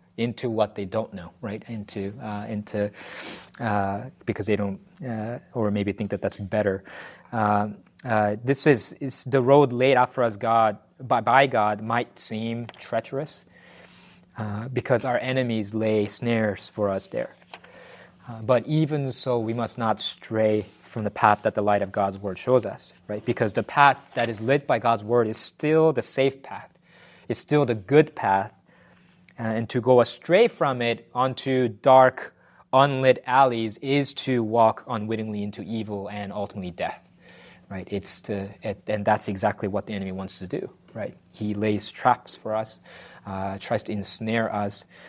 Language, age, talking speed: English, 30-49, 170 wpm